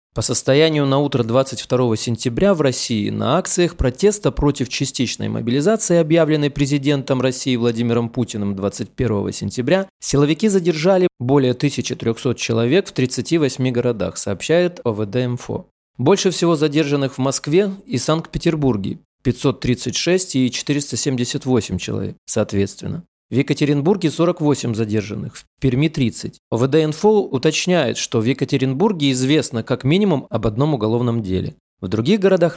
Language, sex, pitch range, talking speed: Russian, male, 120-160 Hz, 125 wpm